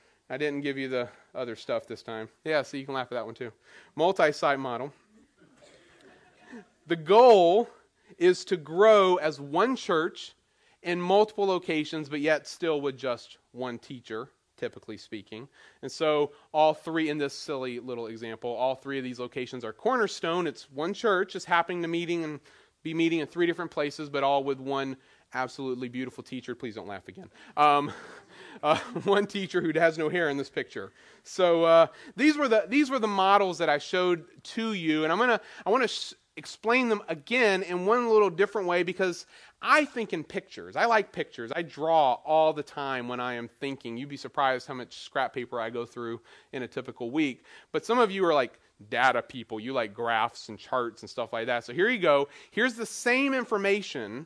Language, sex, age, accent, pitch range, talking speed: English, male, 30-49, American, 130-190 Hz, 195 wpm